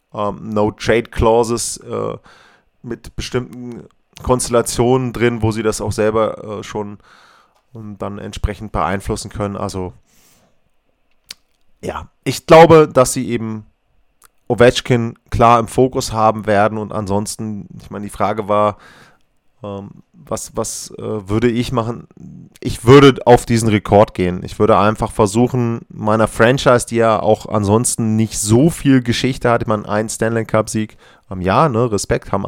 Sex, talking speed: male, 145 wpm